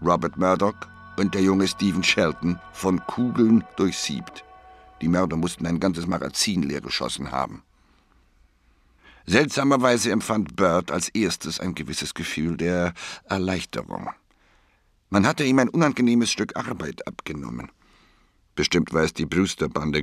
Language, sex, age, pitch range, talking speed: German, male, 60-79, 85-105 Hz, 125 wpm